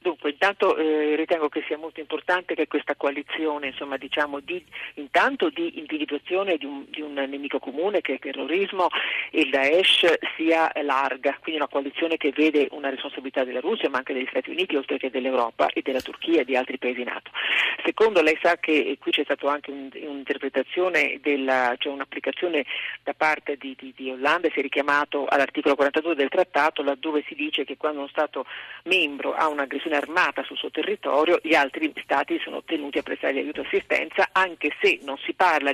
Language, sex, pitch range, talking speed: Italian, male, 140-170 Hz, 190 wpm